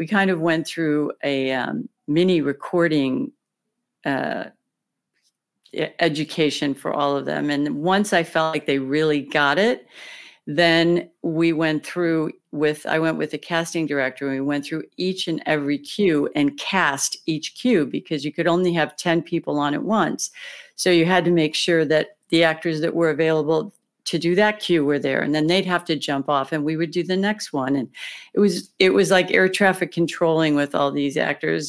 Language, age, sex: English, 50-69, female